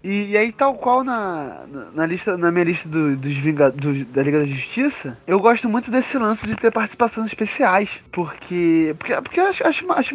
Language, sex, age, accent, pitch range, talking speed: Portuguese, male, 20-39, Brazilian, 165-225 Hz, 215 wpm